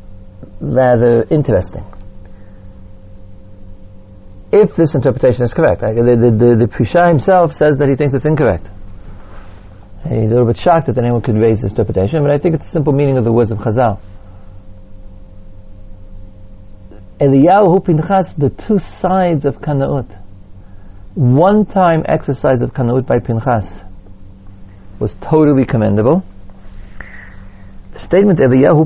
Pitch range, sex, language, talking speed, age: 95-135 Hz, male, English, 130 wpm, 50-69